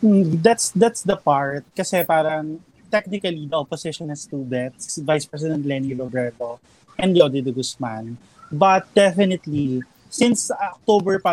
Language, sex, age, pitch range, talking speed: English, male, 20-39, 145-190 Hz, 130 wpm